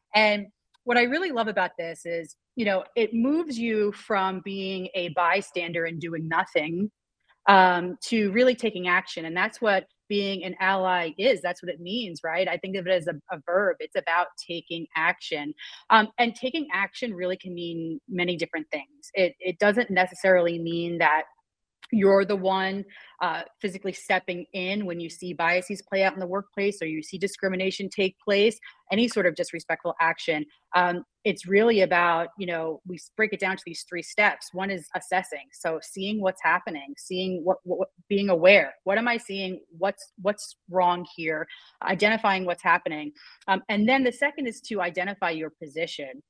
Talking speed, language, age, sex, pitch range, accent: 180 wpm, English, 30-49, female, 175-210 Hz, American